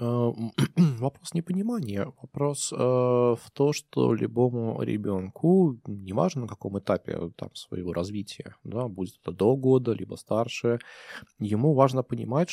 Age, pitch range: 20-39, 105-145 Hz